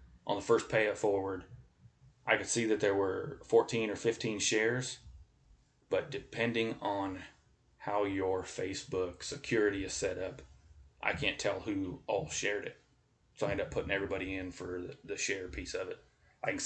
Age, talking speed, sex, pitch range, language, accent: 30-49, 170 wpm, male, 95-115 Hz, English, American